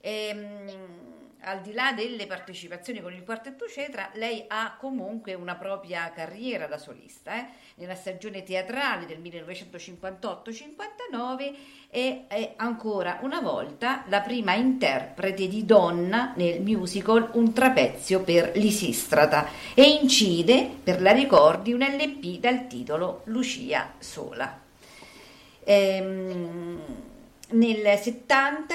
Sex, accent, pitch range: female, native, 175-250 Hz